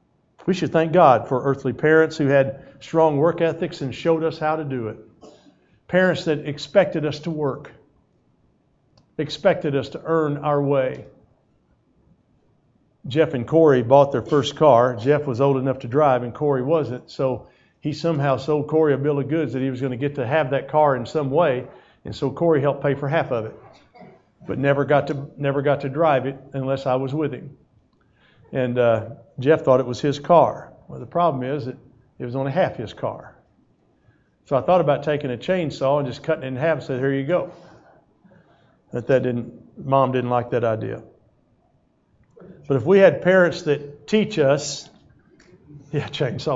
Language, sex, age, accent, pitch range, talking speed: English, male, 50-69, American, 130-155 Hz, 185 wpm